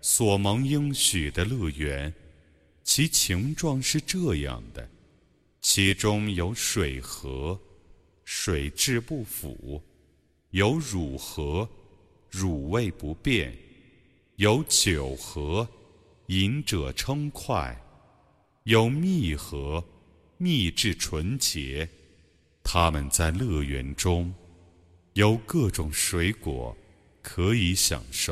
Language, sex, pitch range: Arabic, male, 80-110 Hz